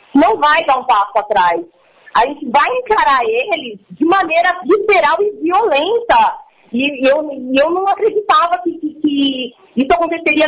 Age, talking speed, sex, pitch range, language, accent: 40-59, 150 wpm, female, 255-355 Hz, Portuguese, Brazilian